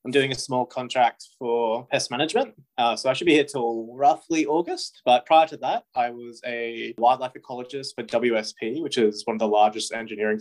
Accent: Australian